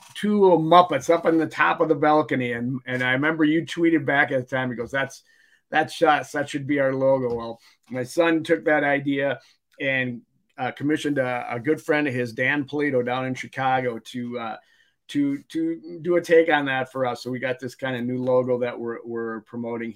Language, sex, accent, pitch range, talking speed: English, male, American, 120-150 Hz, 215 wpm